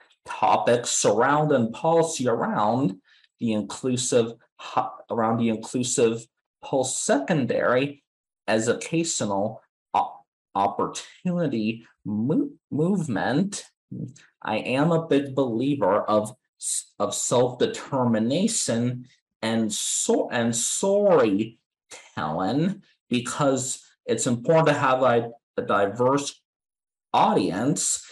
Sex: male